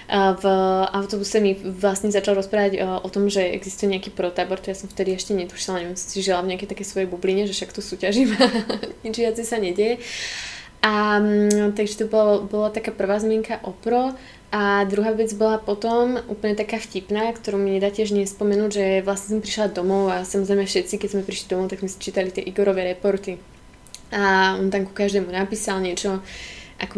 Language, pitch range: Slovak, 190-215 Hz